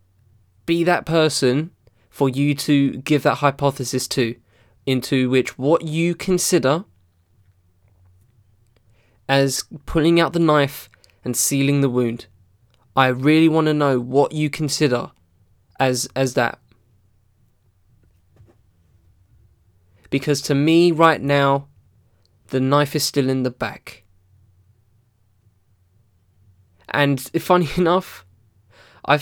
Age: 20-39